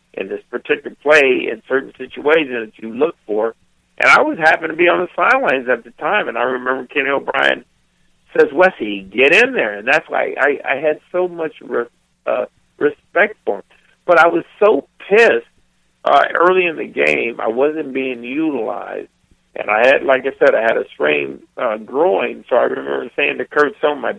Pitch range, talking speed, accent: 120-180 Hz, 200 wpm, American